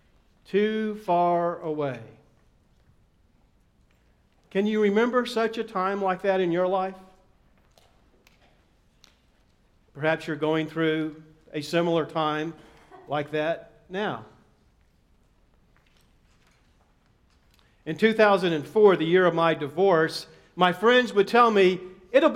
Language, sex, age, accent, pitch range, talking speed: English, male, 50-69, American, 155-230 Hz, 100 wpm